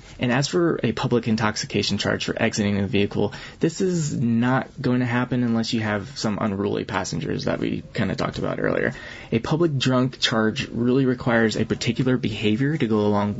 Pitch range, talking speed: 105-125 Hz, 190 wpm